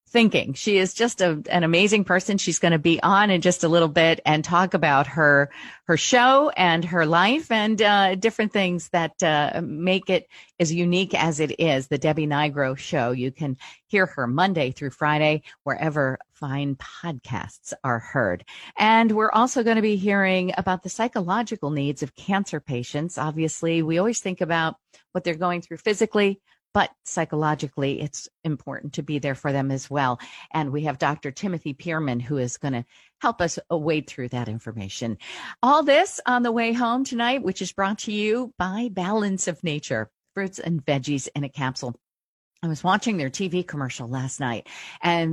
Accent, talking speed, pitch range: American, 185 wpm, 145-195 Hz